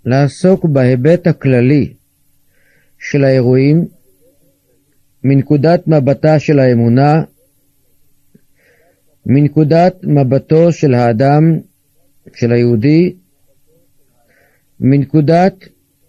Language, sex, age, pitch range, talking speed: Hebrew, male, 50-69, 120-165 Hz, 60 wpm